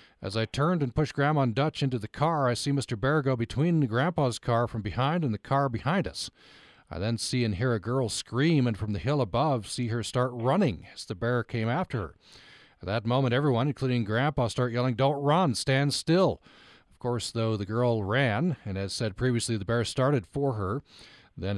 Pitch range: 105-125 Hz